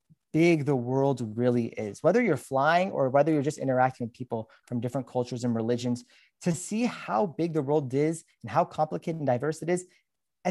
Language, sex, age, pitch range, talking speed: English, male, 30-49, 135-180 Hz, 200 wpm